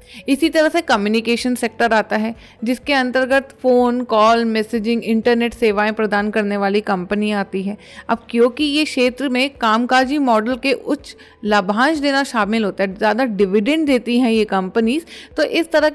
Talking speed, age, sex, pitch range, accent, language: 160 wpm, 30-49, female, 215-275 Hz, Indian, English